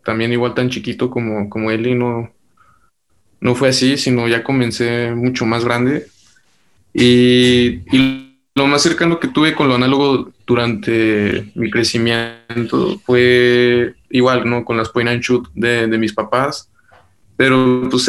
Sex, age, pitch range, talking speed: male, 20-39, 115-130 Hz, 150 wpm